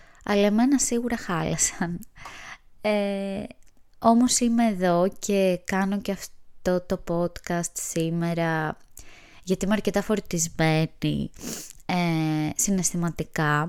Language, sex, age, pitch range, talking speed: Greek, female, 20-39, 155-205 Hz, 90 wpm